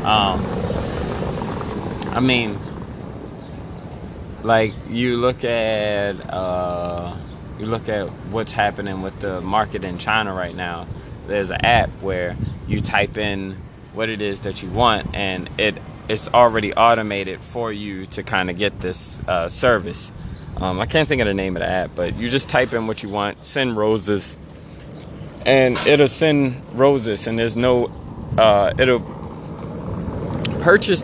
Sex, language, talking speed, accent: male, English, 150 wpm, American